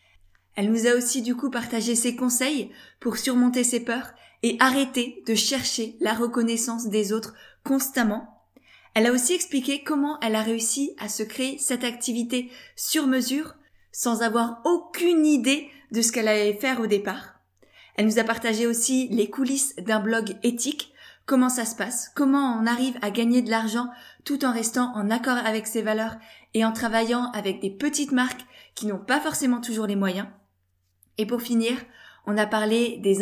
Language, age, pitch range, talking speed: French, 20-39, 220-255 Hz, 175 wpm